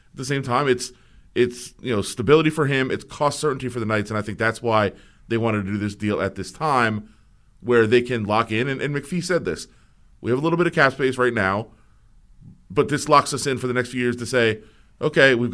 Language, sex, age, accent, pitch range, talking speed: English, male, 30-49, American, 105-135 Hz, 250 wpm